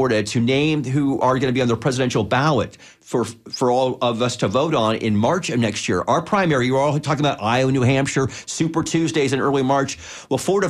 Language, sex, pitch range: English, male, 125-155 Hz